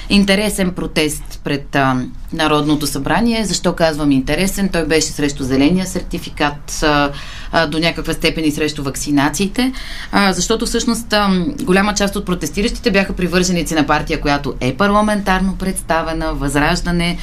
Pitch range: 145-185 Hz